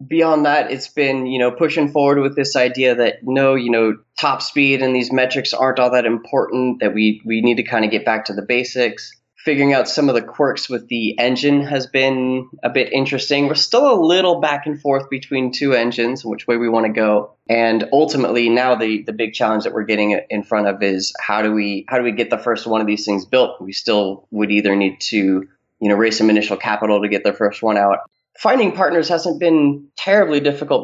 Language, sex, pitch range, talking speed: English, male, 105-135 Hz, 230 wpm